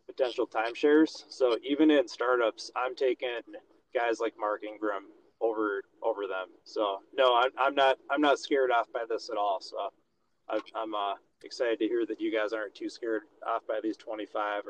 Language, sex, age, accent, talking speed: English, male, 30-49, American, 175 wpm